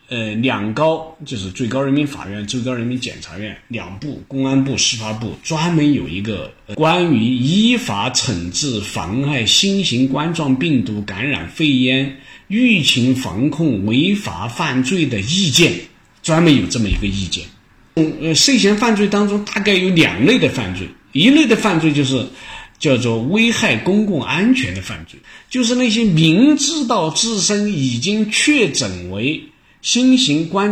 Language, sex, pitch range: Chinese, male, 115-195 Hz